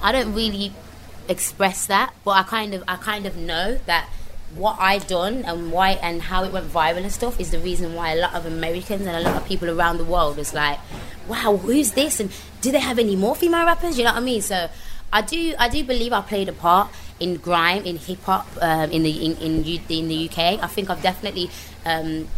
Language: English